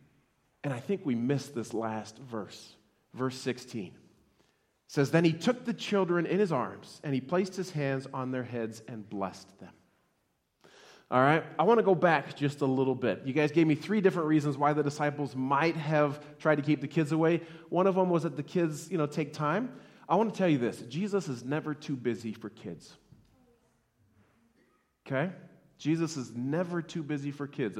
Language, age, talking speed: English, 30-49, 195 wpm